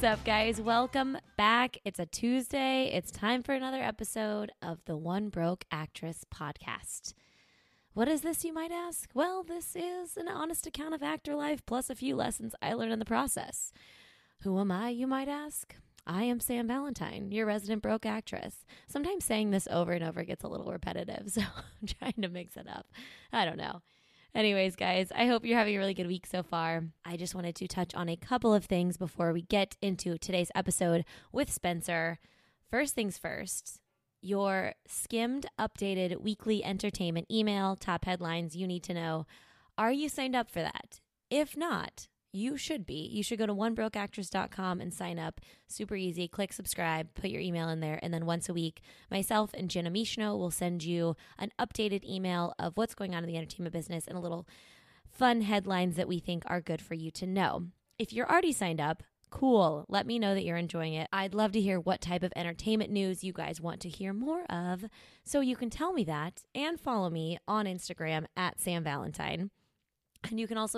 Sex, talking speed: female, 200 wpm